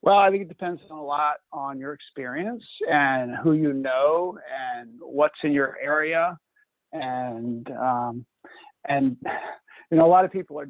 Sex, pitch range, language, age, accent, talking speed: male, 130-160 Hz, English, 50-69, American, 170 wpm